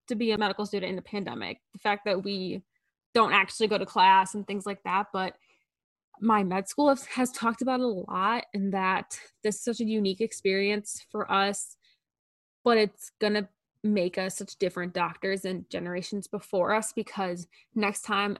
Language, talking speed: English, 185 wpm